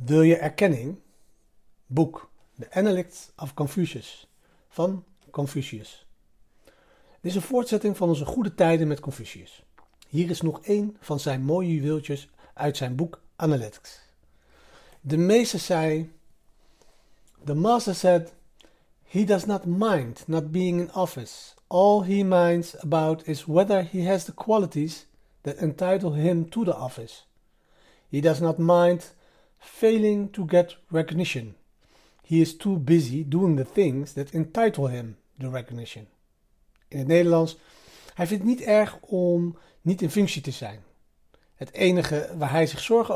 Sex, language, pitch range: male, Dutch, 145-185 Hz